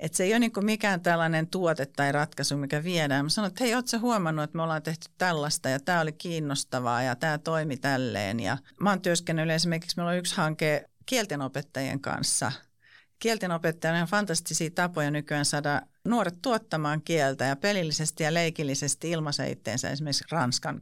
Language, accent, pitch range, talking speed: Finnish, native, 145-175 Hz, 175 wpm